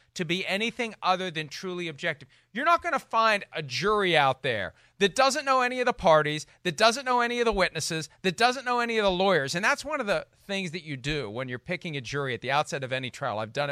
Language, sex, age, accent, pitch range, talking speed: English, male, 40-59, American, 160-230 Hz, 260 wpm